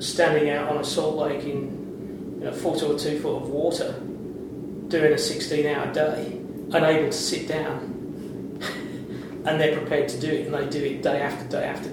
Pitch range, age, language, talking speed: 145-160 Hz, 40-59, English, 190 wpm